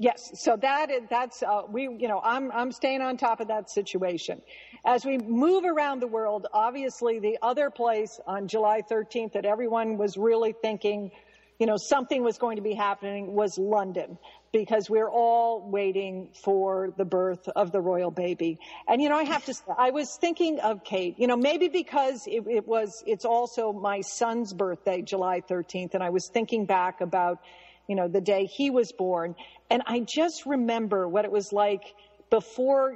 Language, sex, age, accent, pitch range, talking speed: English, female, 50-69, American, 195-255 Hz, 190 wpm